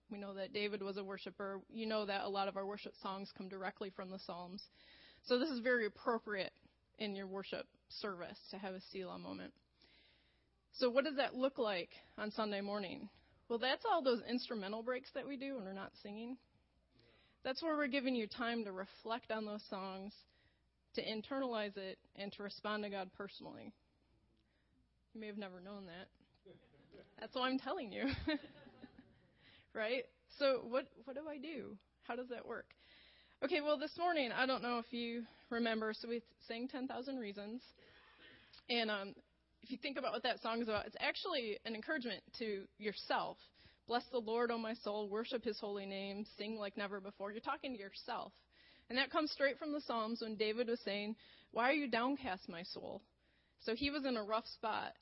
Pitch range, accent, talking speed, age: 205-255 Hz, American, 190 wpm, 20-39